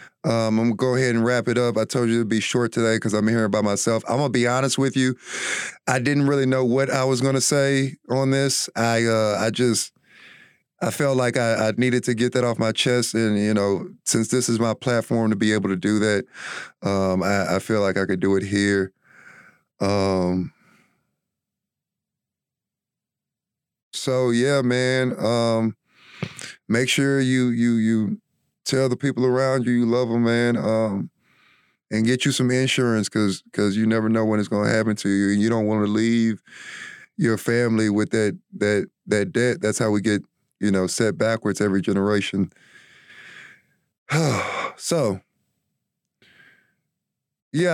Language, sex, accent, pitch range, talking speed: English, male, American, 105-130 Hz, 175 wpm